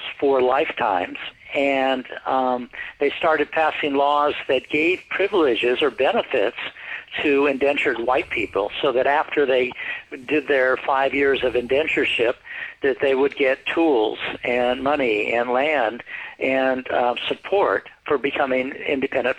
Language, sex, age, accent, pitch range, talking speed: English, male, 60-79, American, 130-150 Hz, 130 wpm